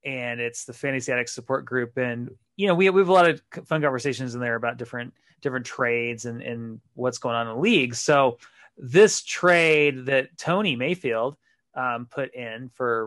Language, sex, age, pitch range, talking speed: English, male, 30-49, 125-160 Hz, 195 wpm